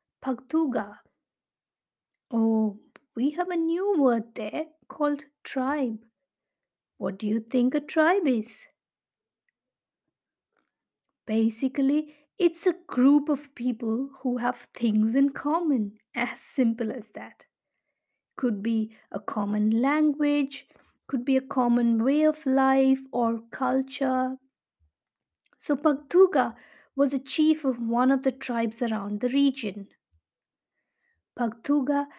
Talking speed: 110 wpm